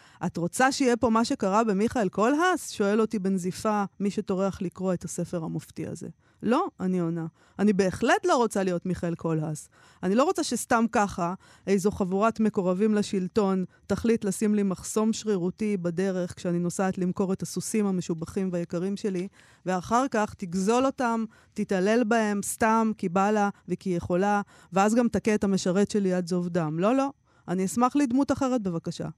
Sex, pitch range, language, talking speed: female, 180-235 Hz, Hebrew, 160 wpm